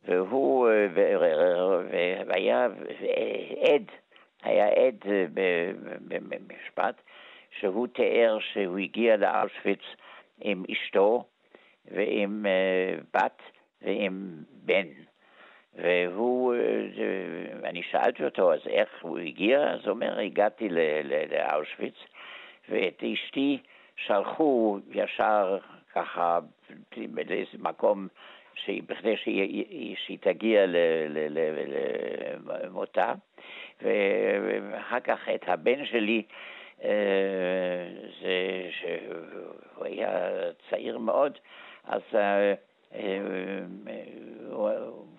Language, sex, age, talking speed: Hebrew, male, 60-79, 70 wpm